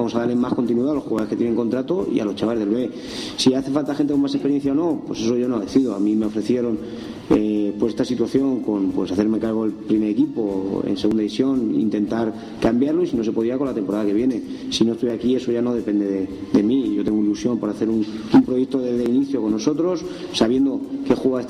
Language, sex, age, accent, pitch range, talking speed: Spanish, male, 30-49, Spanish, 110-135 Hz, 245 wpm